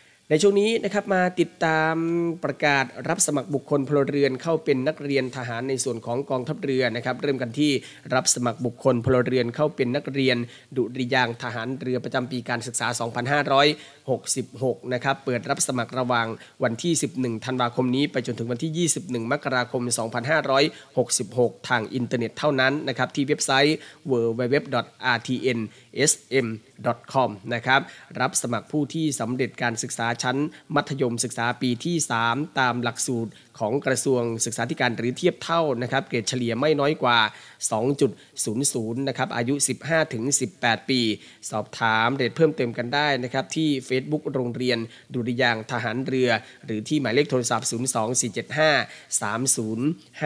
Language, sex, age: Thai, male, 20-39